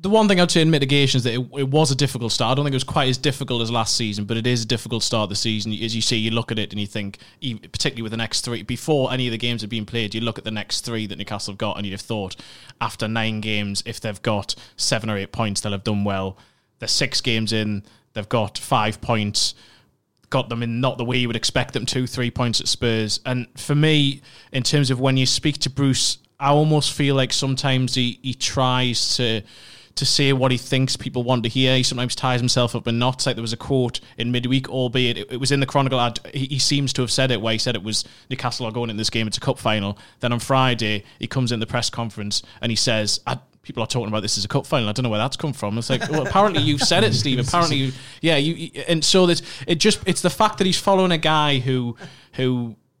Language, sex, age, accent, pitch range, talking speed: English, male, 20-39, British, 110-135 Hz, 265 wpm